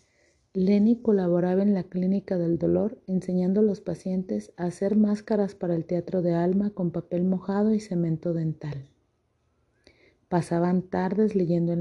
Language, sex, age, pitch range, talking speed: Spanish, female, 40-59, 165-195 Hz, 145 wpm